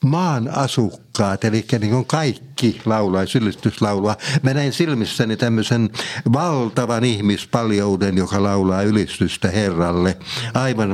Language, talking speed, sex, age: Finnish, 100 wpm, male, 60-79